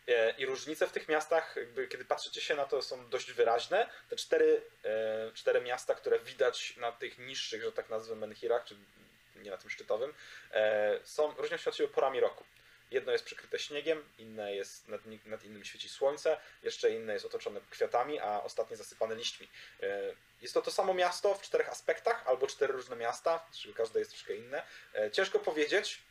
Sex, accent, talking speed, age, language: male, native, 185 wpm, 20-39, Polish